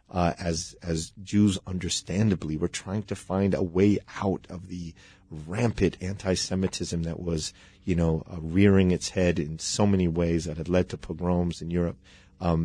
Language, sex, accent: English, male, American